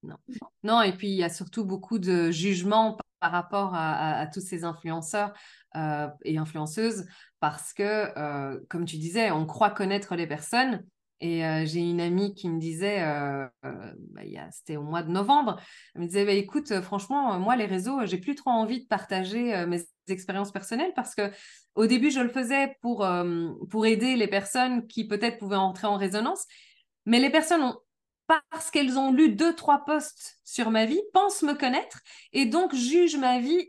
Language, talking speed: French, 200 wpm